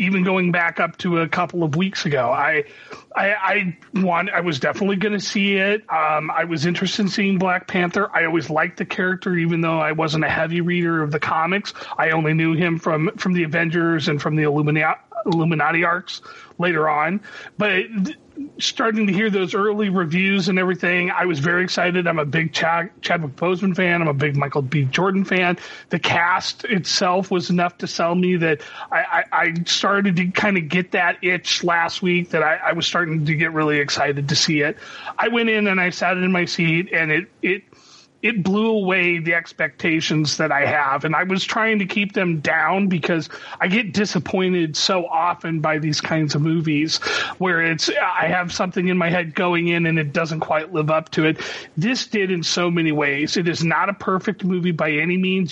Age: 30-49